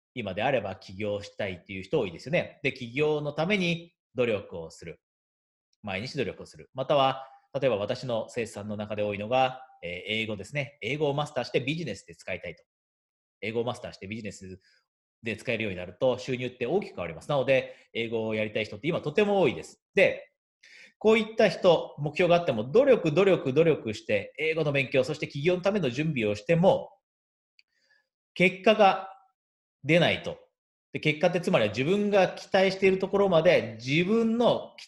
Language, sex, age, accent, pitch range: Japanese, male, 30-49, native, 125-190 Hz